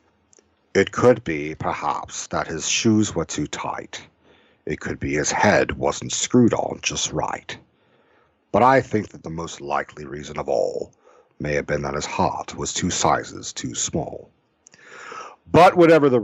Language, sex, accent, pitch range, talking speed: English, male, American, 100-150 Hz, 165 wpm